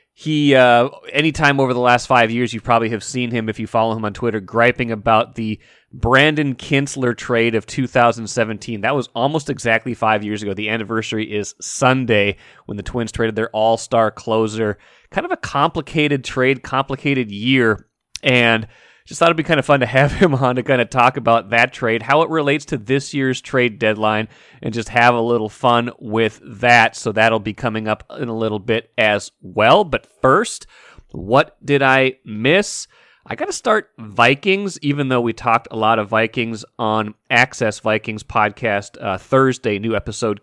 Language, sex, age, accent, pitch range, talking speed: English, male, 30-49, American, 110-130 Hz, 185 wpm